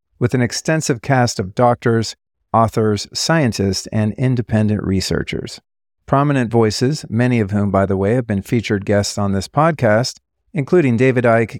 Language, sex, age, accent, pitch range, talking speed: English, male, 40-59, American, 105-130 Hz, 150 wpm